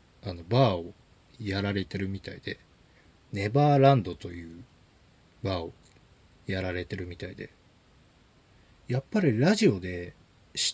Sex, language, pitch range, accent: male, Japanese, 90-130 Hz, native